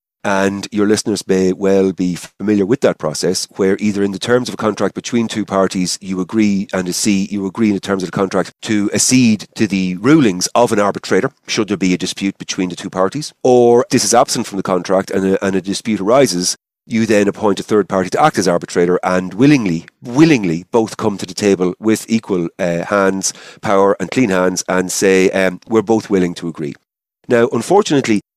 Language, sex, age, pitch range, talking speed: English, male, 40-59, 95-120 Hz, 210 wpm